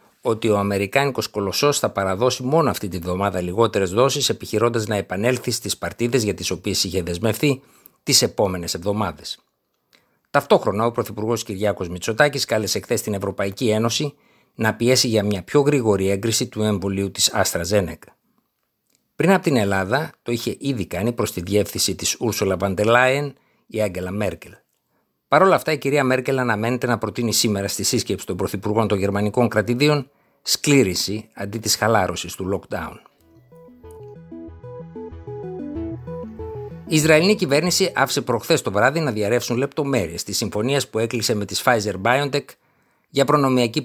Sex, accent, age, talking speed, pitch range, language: male, native, 60-79, 145 wpm, 100-135 Hz, Greek